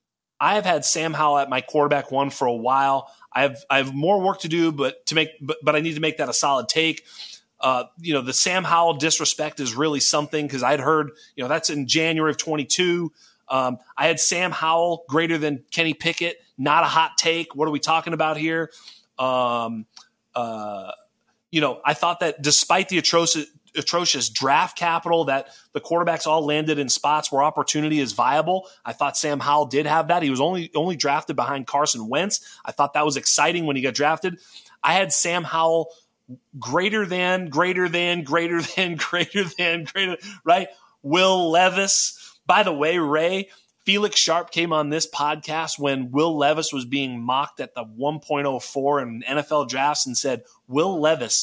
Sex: male